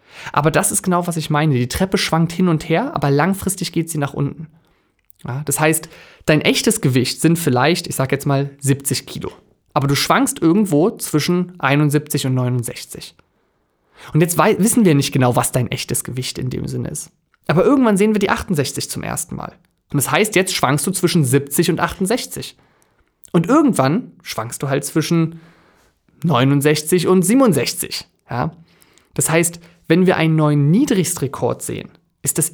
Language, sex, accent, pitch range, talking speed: German, male, German, 140-180 Hz, 170 wpm